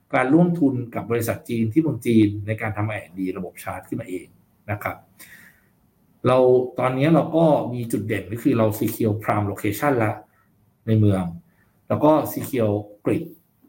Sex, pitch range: male, 110-155 Hz